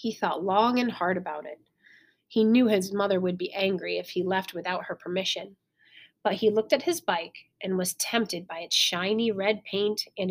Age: 30-49